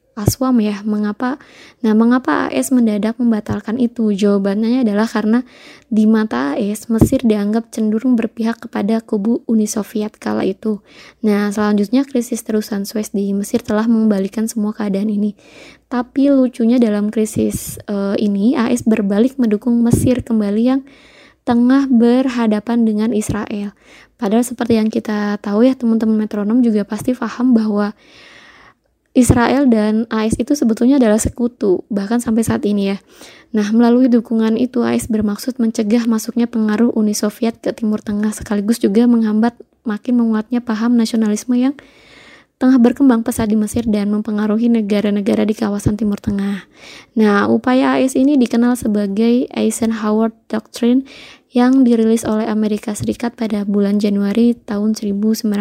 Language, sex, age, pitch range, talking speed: Indonesian, female, 20-39, 210-240 Hz, 140 wpm